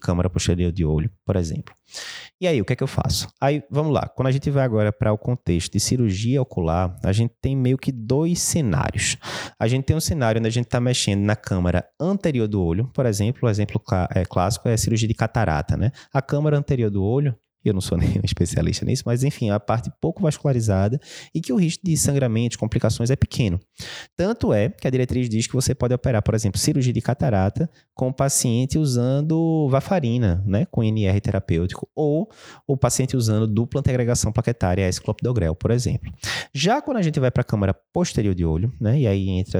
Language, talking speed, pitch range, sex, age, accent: Portuguese, 210 wpm, 100-135 Hz, male, 20-39, Brazilian